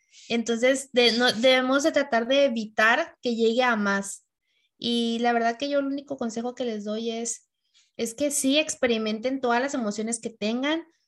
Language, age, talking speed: Spanish, 20-39, 180 wpm